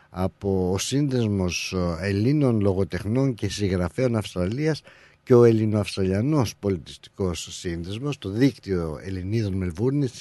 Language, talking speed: Greek, 100 wpm